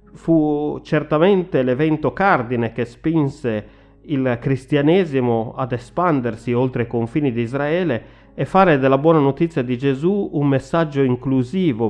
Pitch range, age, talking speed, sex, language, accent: 115-145 Hz, 30-49, 125 wpm, male, Italian, native